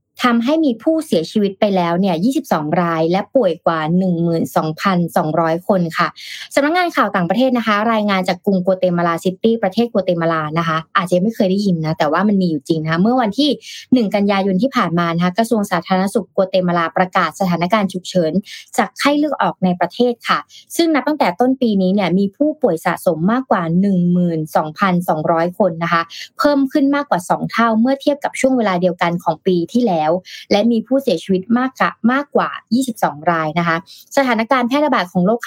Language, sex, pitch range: Thai, female, 175-235 Hz